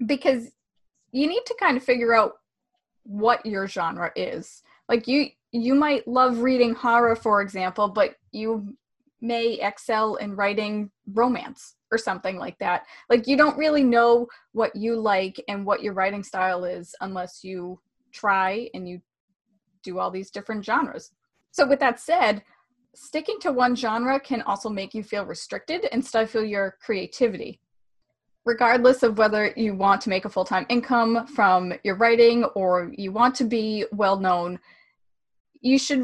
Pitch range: 200-250 Hz